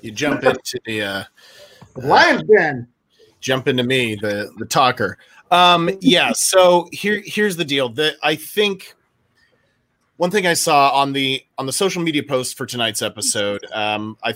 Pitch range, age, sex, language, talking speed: 120-155 Hz, 30-49, male, English, 165 wpm